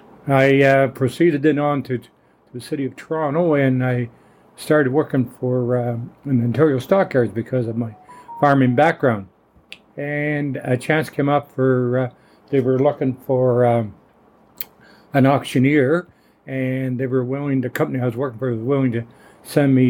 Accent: American